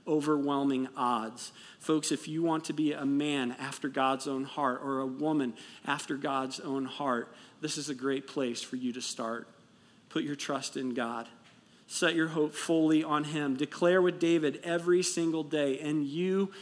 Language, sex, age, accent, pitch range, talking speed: English, male, 40-59, American, 135-160 Hz, 175 wpm